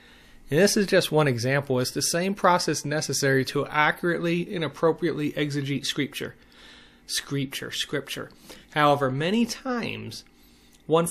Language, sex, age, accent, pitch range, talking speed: English, male, 30-49, American, 135-170 Hz, 125 wpm